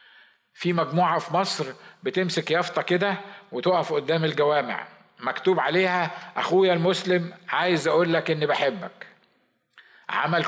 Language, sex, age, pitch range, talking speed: Arabic, male, 50-69, 155-180 Hz, 115 wpm